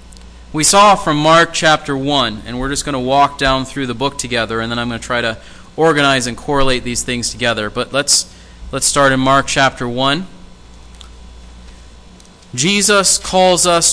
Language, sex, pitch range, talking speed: English, male, 115-150 Hz, 175 wpm